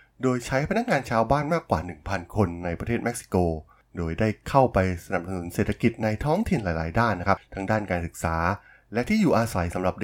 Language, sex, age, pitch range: Thai, male, 20-39, 90-120 Hz